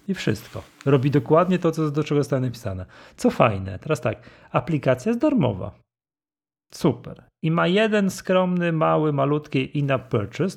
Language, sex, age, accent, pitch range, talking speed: Polish, male, 40-59, native, 120-160 Hz, 140 wpm